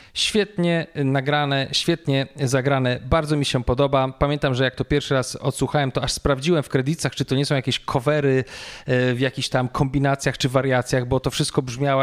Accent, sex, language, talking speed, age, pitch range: native, male, Polish, 180 wpm, 40-59, 125-140 Hz